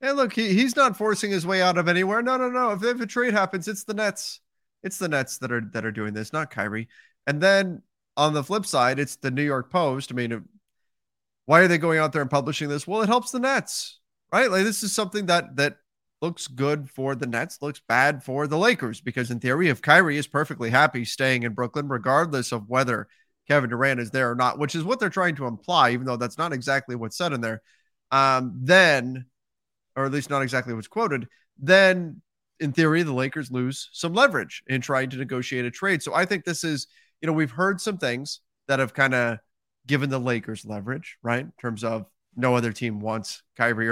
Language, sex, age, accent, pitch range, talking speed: English, male, 30-49, American, 125-180 Hz, 225 wpm